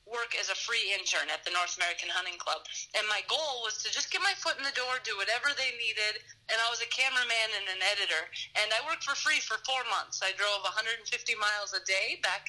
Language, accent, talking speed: English, American, 240 wpm